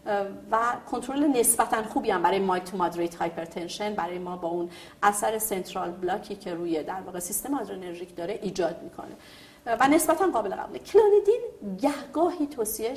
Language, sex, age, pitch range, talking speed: Persian, female, 40-59, 190-265 Hz, 155 wpm